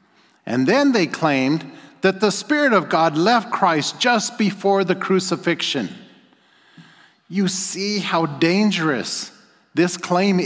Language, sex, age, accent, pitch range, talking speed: English, male, 50-69, American, 140-190 Hz, 120 wpm